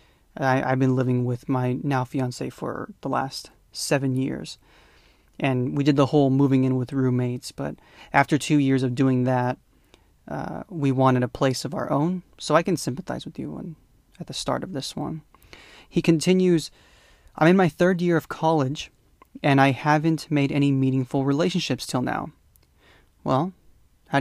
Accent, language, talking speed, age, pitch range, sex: American, English, 170 wpm, 30-49, 130-150 Hz, male